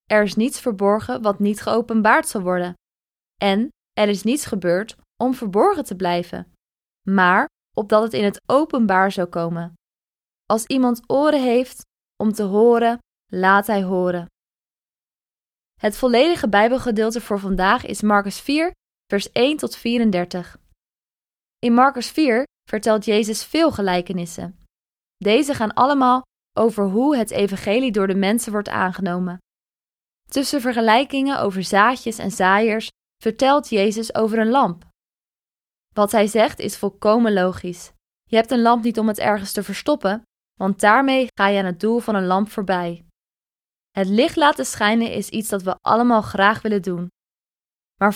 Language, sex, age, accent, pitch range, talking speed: Dutch, female, 20-39, Dutch, 195-240 Hz, 145 wpm